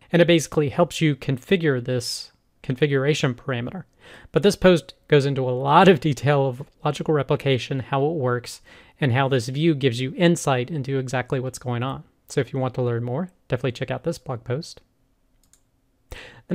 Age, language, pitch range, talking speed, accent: 30-49, English, 130-160 Hz, 180 wpm, American